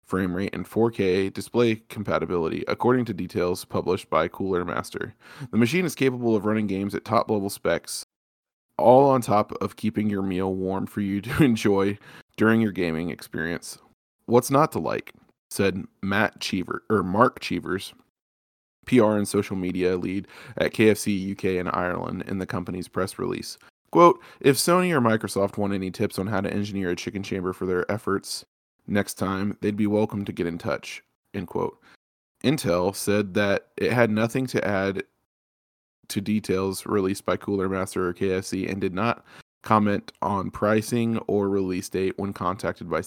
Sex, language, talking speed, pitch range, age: male, English, 170 wpm, 95-110 Hz, 20-39